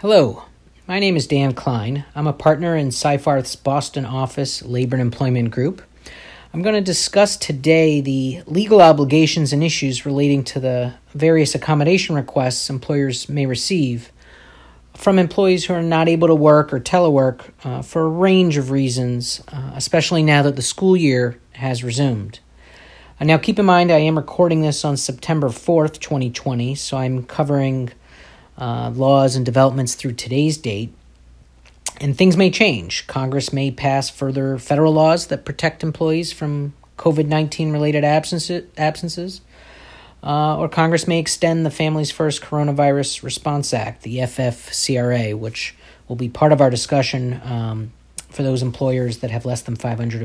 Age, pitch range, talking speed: 40-59, 125-155 Hz, 155 wpm